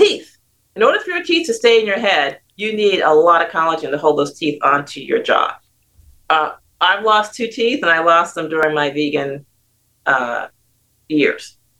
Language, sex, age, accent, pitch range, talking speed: English, female, 40-59, American, 145-200 Hz, 190 wpm